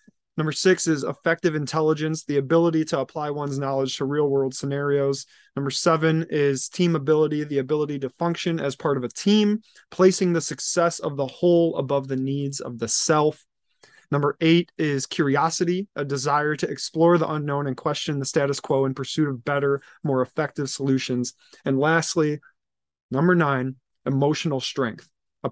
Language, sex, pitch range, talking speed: English, male, 135-160 Hz, 165 wpm